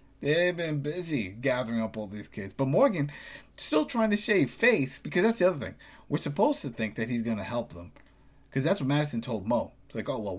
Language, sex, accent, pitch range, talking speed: English, male, American, 115-145 Hz, 230 wpm